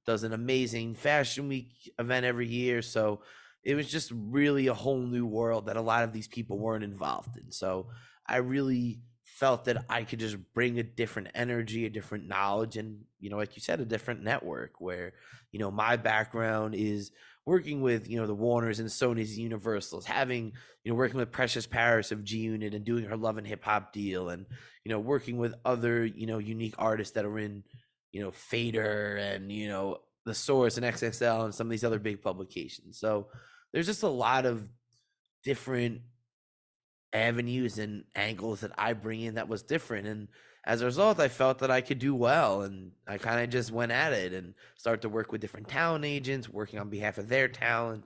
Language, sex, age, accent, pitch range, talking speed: English, male, 20-39, American, 105-125 Hz, 200 wpm